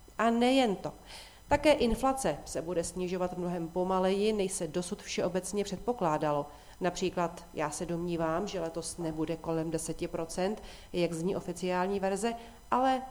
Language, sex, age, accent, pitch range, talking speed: Czech, female, 40-59, native, 170-220 Hz, 135 wpm